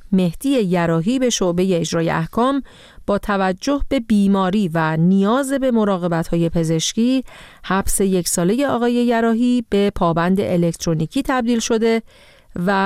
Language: Persian